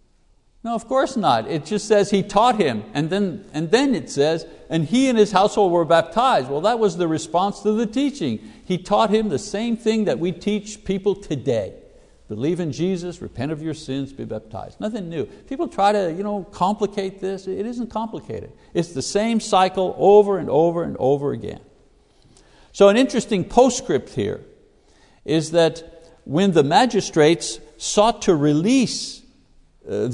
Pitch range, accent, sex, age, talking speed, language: 155-220 Hz, American, male, 60-79, 165 wpm, English